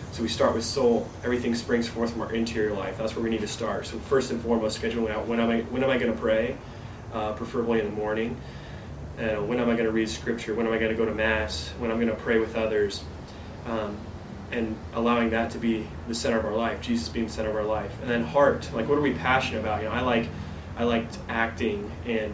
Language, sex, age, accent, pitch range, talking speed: English, male, 30-49, American, 105-115 Hz, 260 wpm